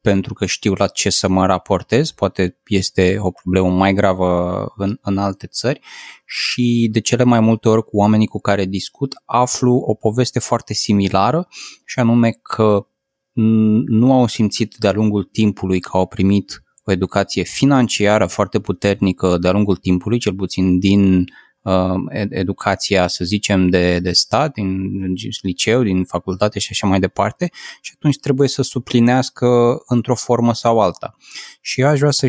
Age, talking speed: 20-39, 160 wpm